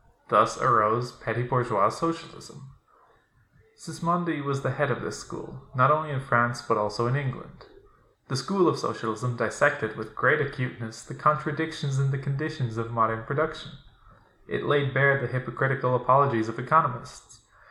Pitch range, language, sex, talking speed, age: 115-140 Hz, English, male, 145 wpm, 20-39